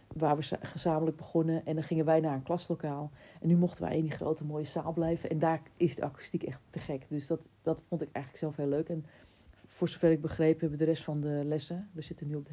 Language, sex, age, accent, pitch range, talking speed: Dutch, female, 40-59, Dutch, 145-170 Hz, 265 wpm